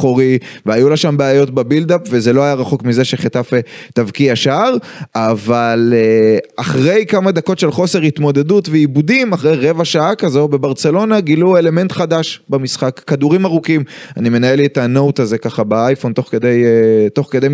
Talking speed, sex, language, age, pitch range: 150 wpm, male, Hebrew, 20-39, 125-175 Hz